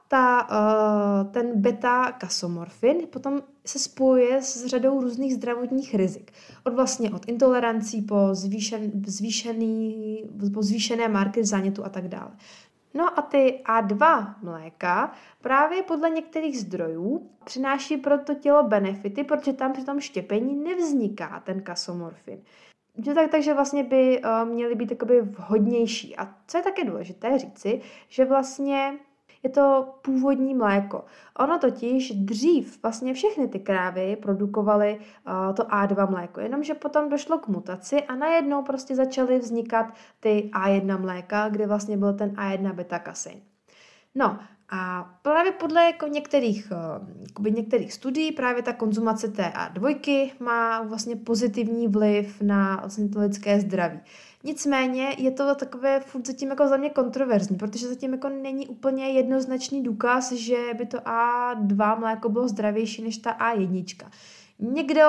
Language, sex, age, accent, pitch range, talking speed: Czech, female, 20-39, native, 205-270 Hz, 135 wpm